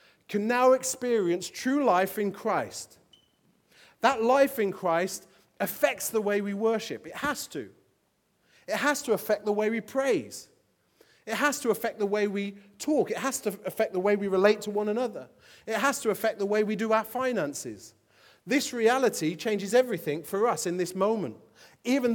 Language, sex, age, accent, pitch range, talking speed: English, male, 30-49, British, 155-215 Hz, 180 wpm